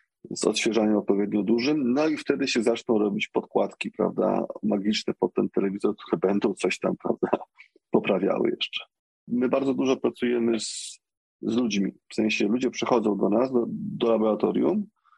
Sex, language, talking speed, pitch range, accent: male, Polish, 150 wpm, 105-130 Hz, native